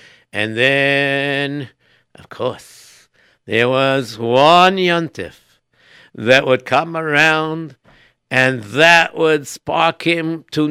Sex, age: male, 60-79